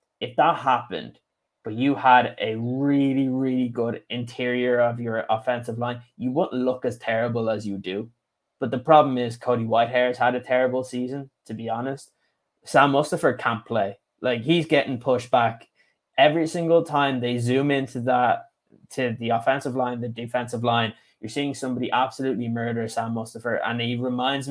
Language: English